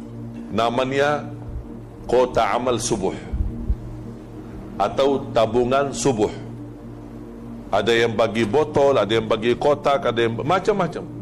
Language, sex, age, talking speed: Indonesian, male, 50-69, 95 wpm